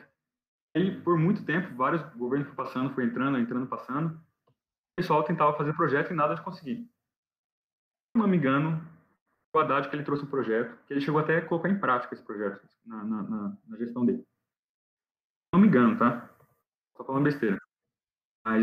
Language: Portuguese